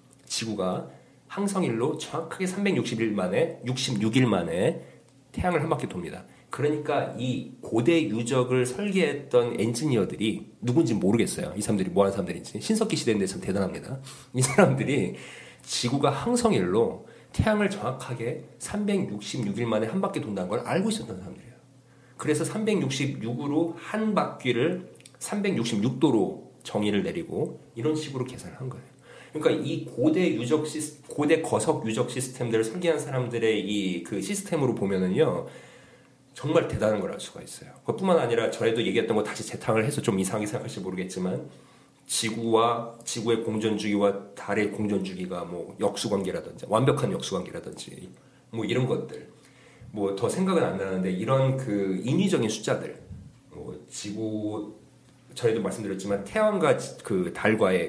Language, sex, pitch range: Korean, male, 110-155 Hz